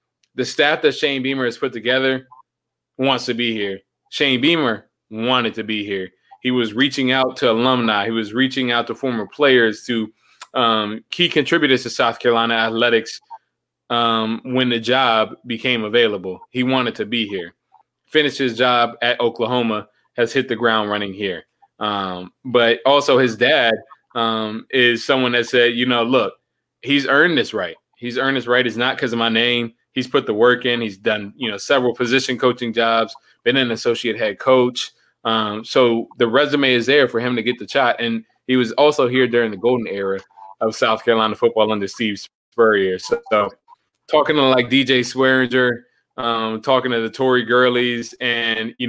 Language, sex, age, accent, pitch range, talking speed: English, male, 20-39, American, 115-130 Hz, 185 wpm